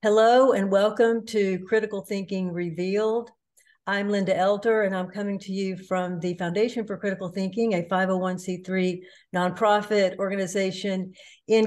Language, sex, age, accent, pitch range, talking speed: English, female, 60-79, American, 185-225 Hz, 135 wpm